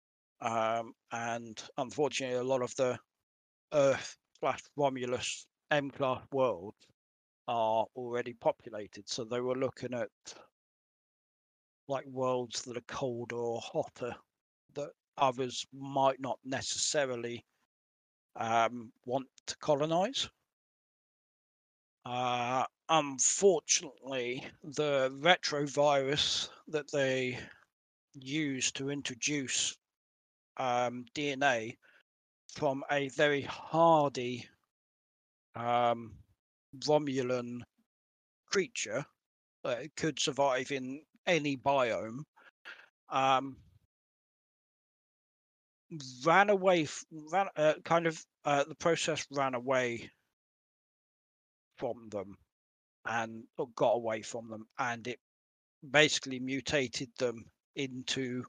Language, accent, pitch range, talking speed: English, British, 115-140 Hz, 85 wpm